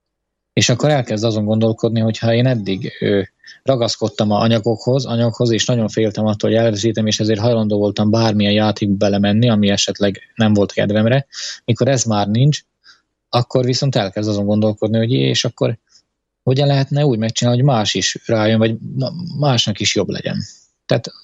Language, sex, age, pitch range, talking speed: Slovak, male, 20-39, 105-115 Hz, 165 wpm